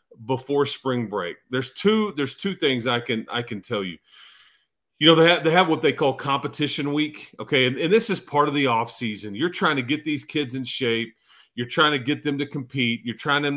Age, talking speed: 40-59, 235 wpm